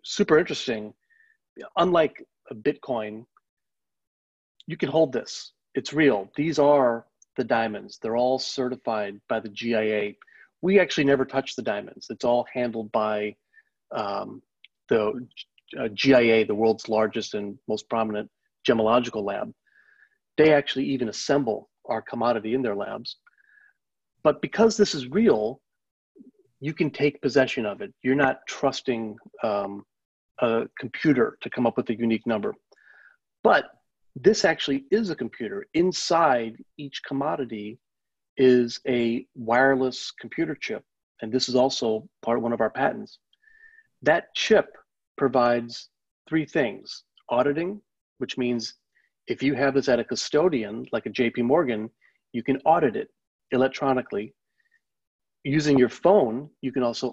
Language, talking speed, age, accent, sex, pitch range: English, 140 wpm, 40-59, American, male, 115-165 Hz